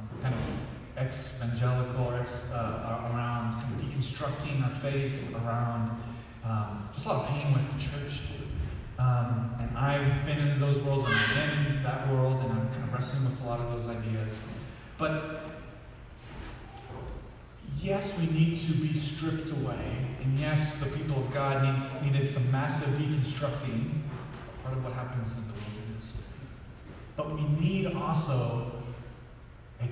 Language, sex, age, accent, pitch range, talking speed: English, male, 30-49, American, 120-145 Hz, 155 wpm